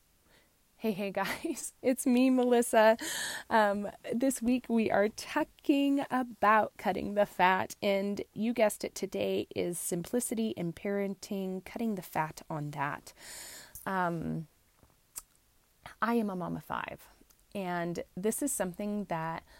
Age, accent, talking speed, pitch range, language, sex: 30-49, American, 130 wpm, 175-230 Hz, English, female